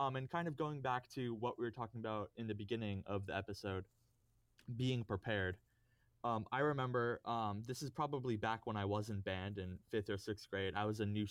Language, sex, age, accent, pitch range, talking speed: English, male, 20-39, American, 105-120 Hz, 225 wpm